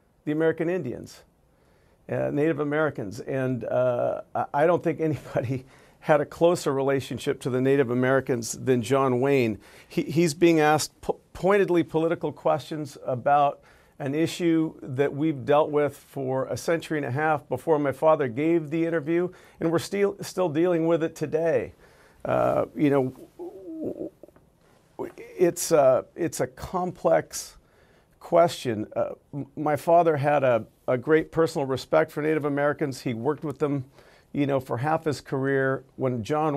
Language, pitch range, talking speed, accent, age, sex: Danish, 135-160 Hz, 150 wpm, American, 50-69, male